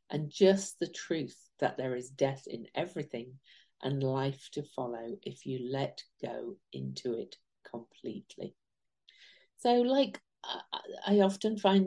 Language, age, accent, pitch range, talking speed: English, 50-69, British, 130-175 Hz, 130 wpm